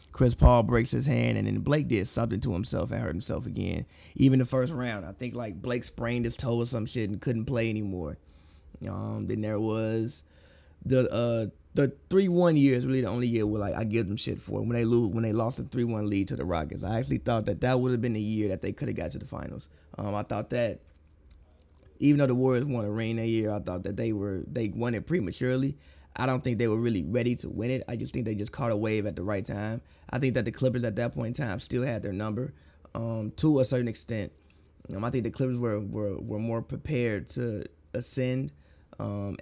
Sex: male